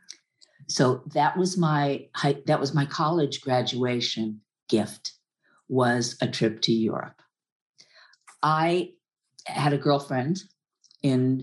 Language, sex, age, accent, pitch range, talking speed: English, female, 50-69, American, 125-150 Hz, 105 wpm